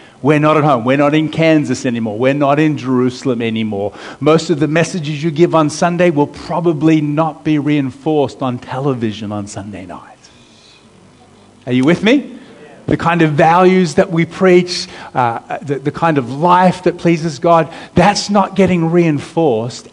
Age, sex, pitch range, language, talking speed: 40-59, male, 130-175 Hz, English, 170 wpm